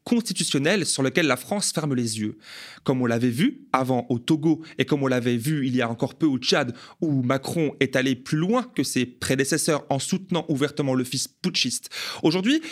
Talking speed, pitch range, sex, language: 205 wpm, 130-160 Hz, male, French